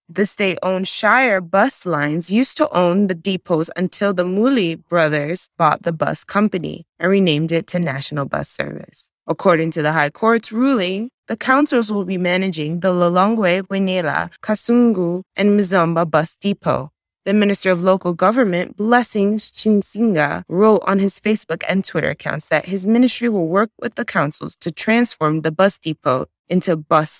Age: 20-39